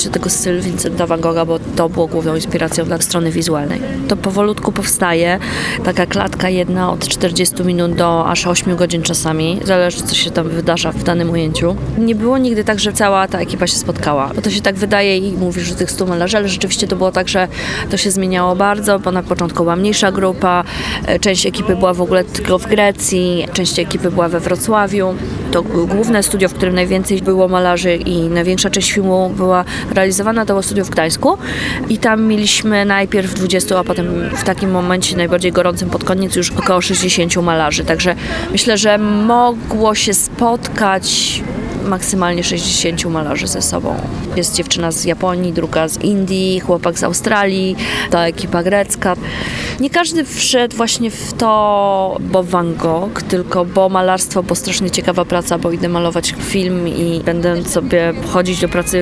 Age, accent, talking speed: 20-39, native, 175 wpm